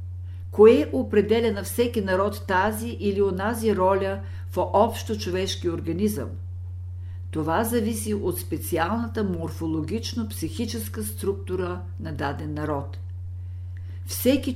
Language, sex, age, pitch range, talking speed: Bulgarian, female, 50-69, 90-115 Hz, 90 wpm